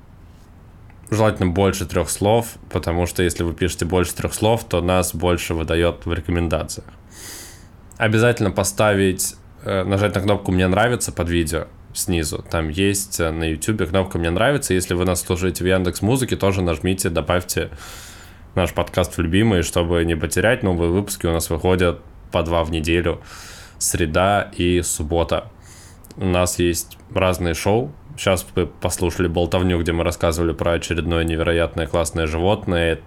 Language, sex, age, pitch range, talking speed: Russian, male, 20-39, 85-95 Hz, 145 wpm